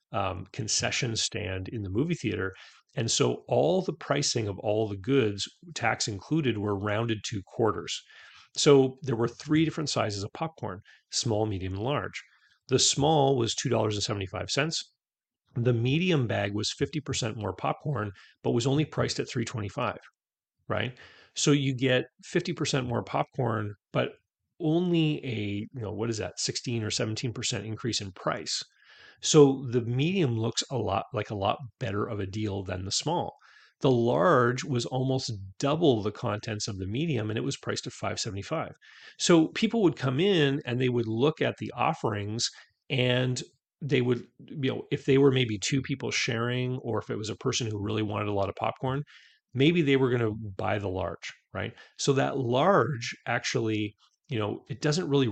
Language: English